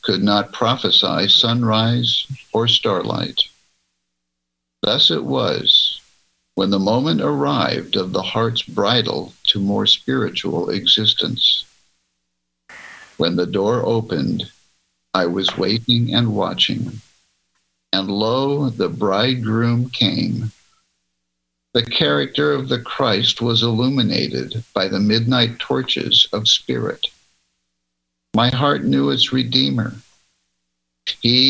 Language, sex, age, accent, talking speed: English, male, 60-79, American, 105 wpm